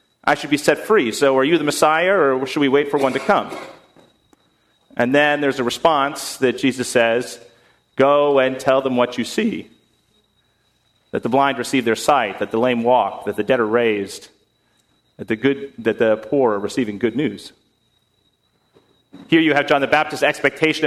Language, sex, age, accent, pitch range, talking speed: English, male, 40-59, American, 115-145 Hz, 185 wpm